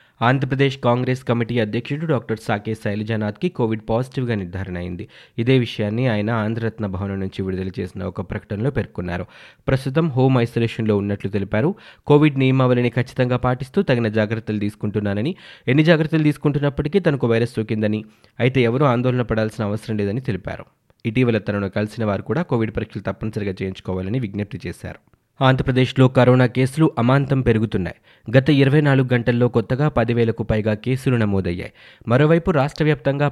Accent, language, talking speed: native, Telugu, 135 wpm